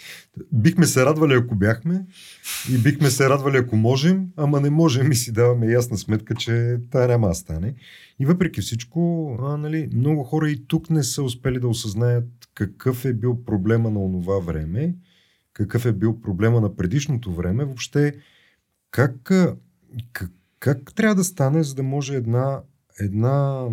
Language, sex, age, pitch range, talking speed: Bulgarian, male, 40-59, 100-140 Hz, 160 wpm